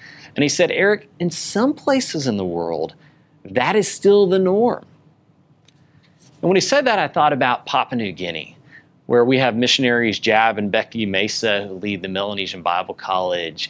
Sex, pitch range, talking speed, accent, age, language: male, 120-175 Hz, 175 wpm, American, 40-59, English